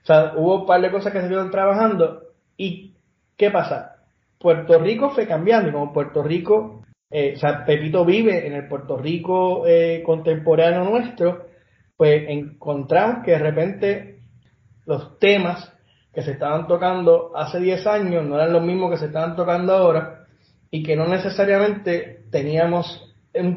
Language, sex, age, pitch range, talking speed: Spanish, male, 30-49, 135-175 Hz, 160 wpm